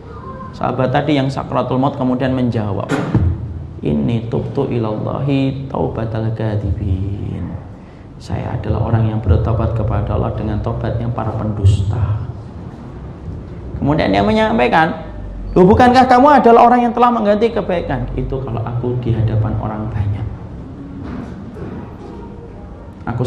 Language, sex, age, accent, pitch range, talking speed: Indonesian, male, 30-49, native, 110-130 Hz, 110 wpm